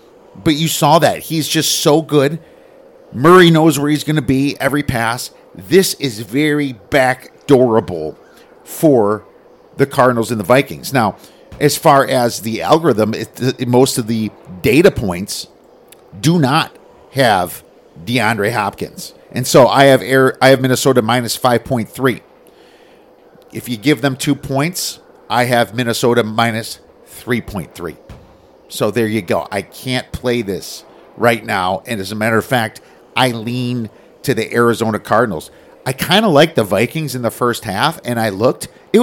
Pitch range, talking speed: 115-150 Hz, 155 wpm